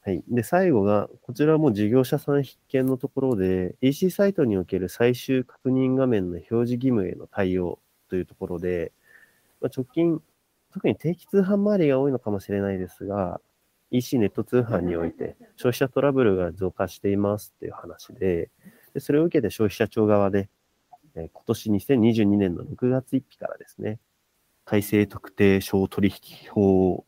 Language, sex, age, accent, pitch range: Japanese, male, 30-49, native, 95-140 Hz